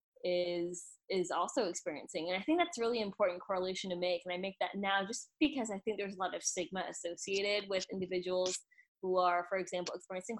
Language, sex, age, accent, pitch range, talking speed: English, female, 20-39, American, 180-210 Hz, 200 wpm